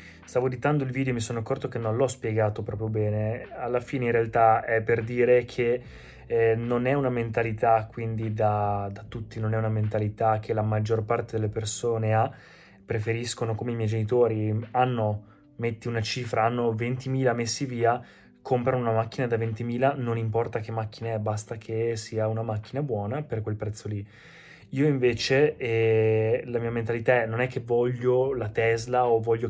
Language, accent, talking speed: Italian, native, 180 wpm